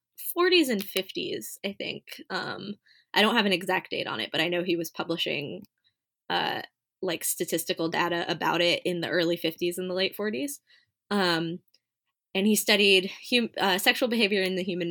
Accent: American